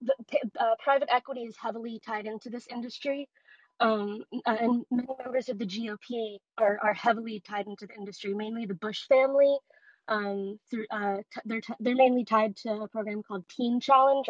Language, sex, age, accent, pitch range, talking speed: English, female, 20-39, American, 210-250 Hz, 180 wpm